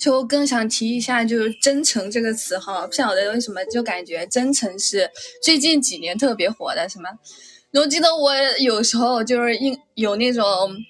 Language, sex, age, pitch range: Chinese, female, 20-39, 215-275 Hz